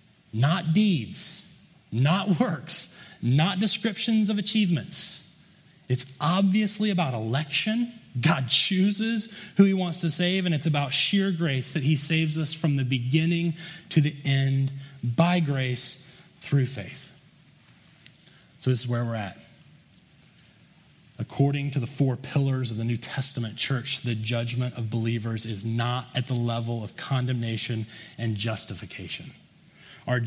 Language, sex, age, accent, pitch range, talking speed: English, male, 30-49, American, 130-175 Hz, 135 wpm